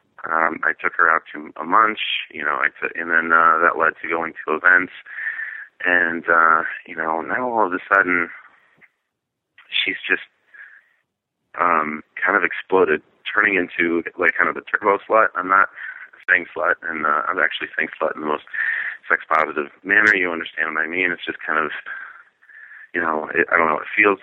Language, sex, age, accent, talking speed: English, male, 30-49, American, 190 wpm